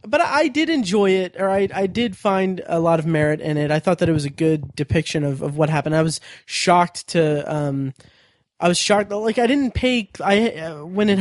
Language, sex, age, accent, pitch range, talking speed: English, male, 20-39, American, 150-180 Hz, 235 wpm